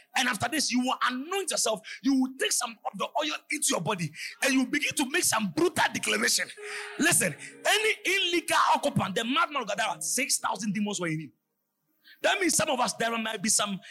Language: English